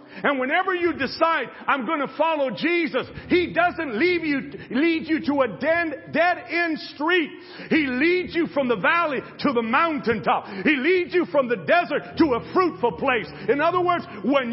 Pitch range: 235-330 Hz